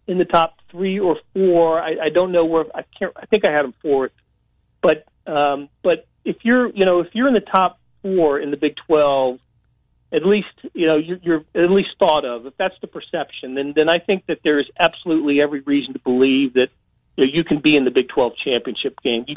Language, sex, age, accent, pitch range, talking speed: English, male, 40-59, American, 135-175 Hz, 225 wpm